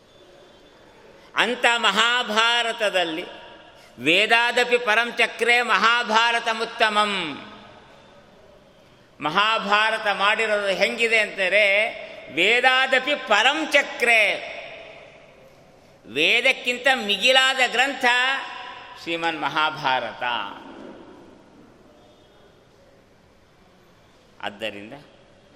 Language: Kannada